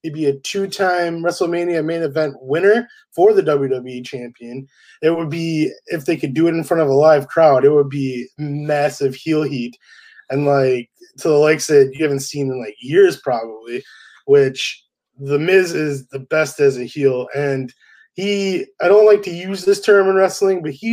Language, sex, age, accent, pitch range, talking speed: English, male, 20-39, American, 140-180 Hz, 190 wpm